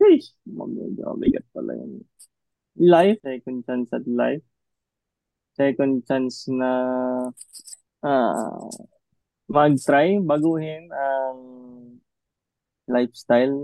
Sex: male